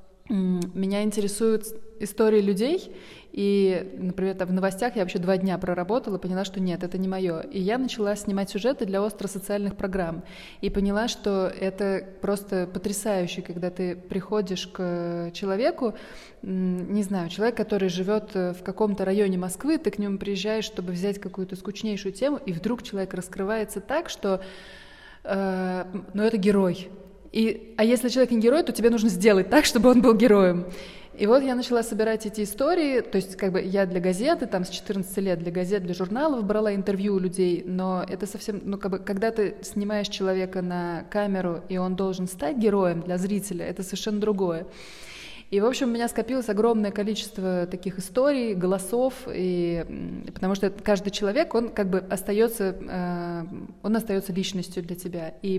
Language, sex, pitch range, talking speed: Russian, female, 185-215 Hz, 160 wpm